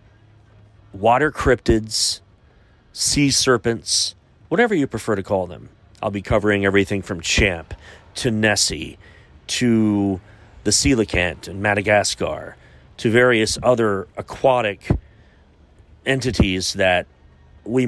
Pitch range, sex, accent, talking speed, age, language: 90-110 Hz, male, American, 100 wpm, 40-59, English